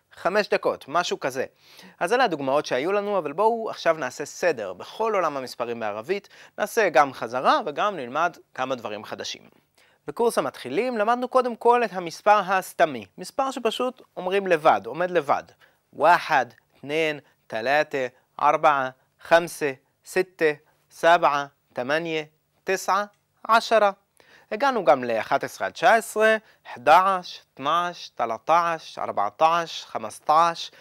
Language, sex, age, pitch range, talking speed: Hebrew, male, 30-49, 150-205 Hz, 115 wpm